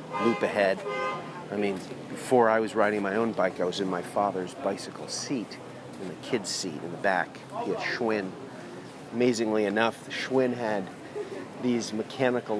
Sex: male